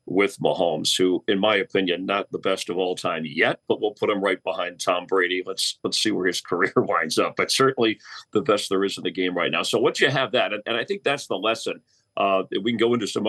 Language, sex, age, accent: English, male, 40-59, American